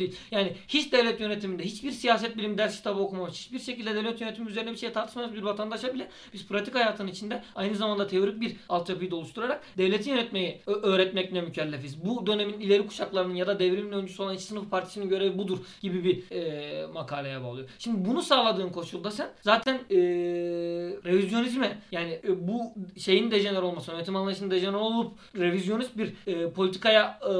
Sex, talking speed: male, 165 wpm